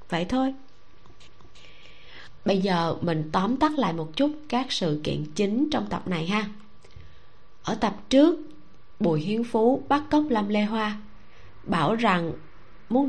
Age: 20-39